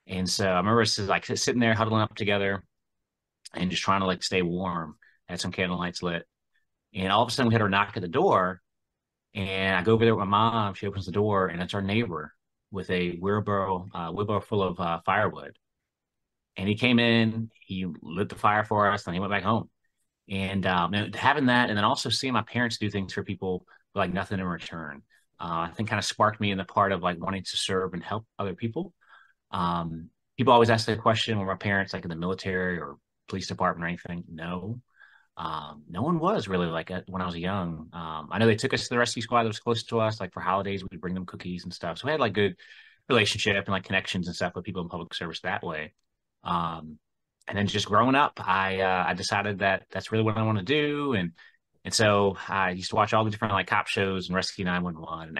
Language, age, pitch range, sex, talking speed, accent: English, 30-49, 90-110 Hz, male, 235 wpm, American